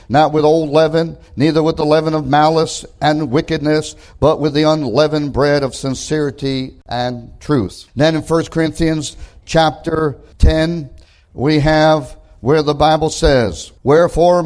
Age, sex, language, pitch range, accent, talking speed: 50-69, male, English, 120-160 Hz, American, 140 wpm